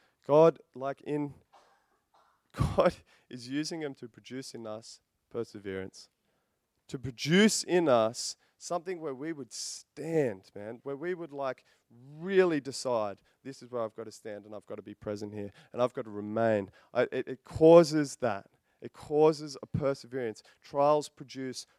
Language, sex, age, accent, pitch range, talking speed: English, male, 20-39, Australian, 110-140 Hz, 160 wpm